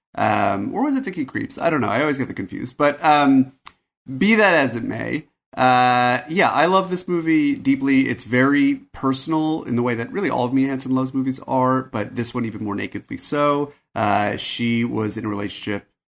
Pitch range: 100-130 Hz